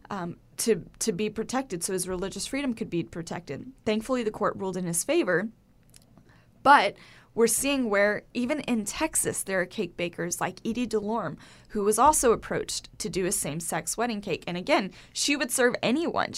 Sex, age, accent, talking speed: female, 10-29, American, 180 wpm